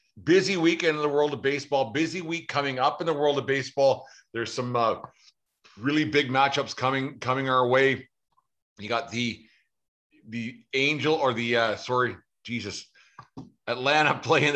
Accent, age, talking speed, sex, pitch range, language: American, 50-69, 155 wpm, male, 115-135 Hz, English